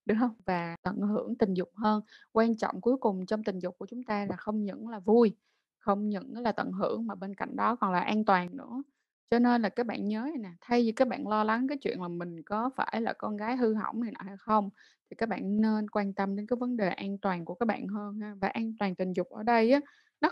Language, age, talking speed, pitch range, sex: Vietnamese, 20-39, 270 wpm, 200-255 Hz, female